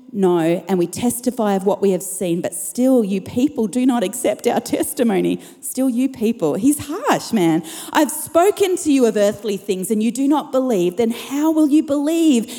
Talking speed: 195 wpm